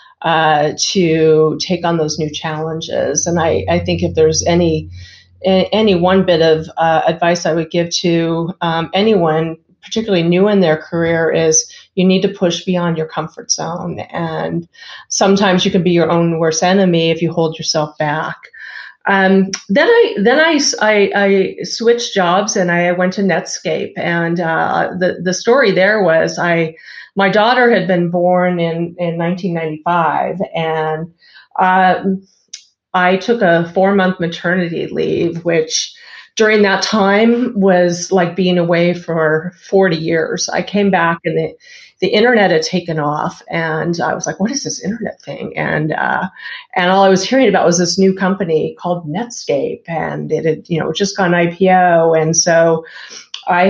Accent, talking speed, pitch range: American, 165 wpm, 165-195 Hz